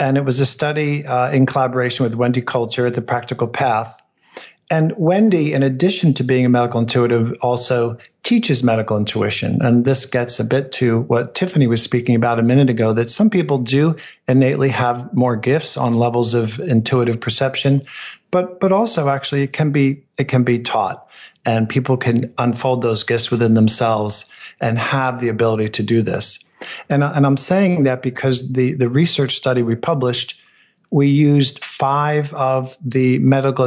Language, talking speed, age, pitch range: English, 175 wpm, 50-69, 120-140 Hz